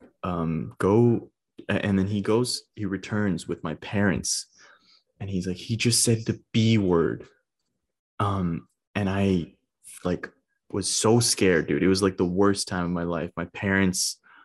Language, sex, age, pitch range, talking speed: English, male, 20-39, 85-100 Hz, 160 wpm